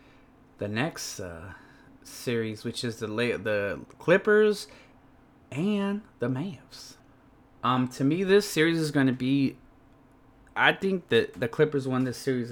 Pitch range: 125-150 Hz